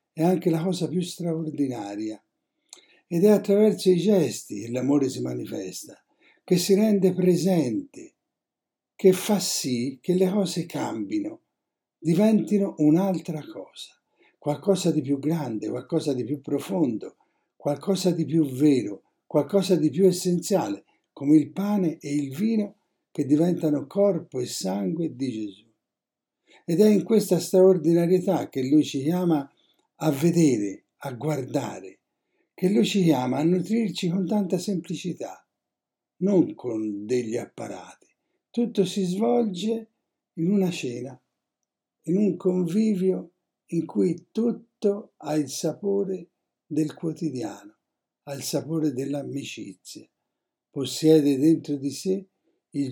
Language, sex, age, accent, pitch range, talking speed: Italian, male, 60-79, native, 145-195 Hz, 125 wpm